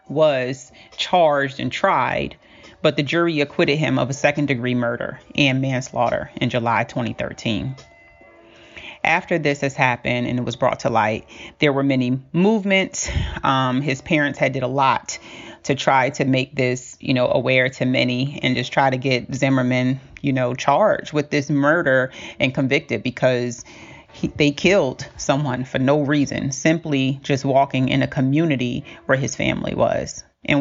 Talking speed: 160 wpm